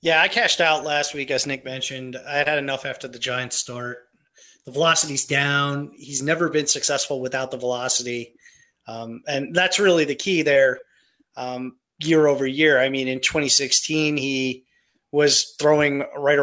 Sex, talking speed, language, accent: male, 165 wpm, English, American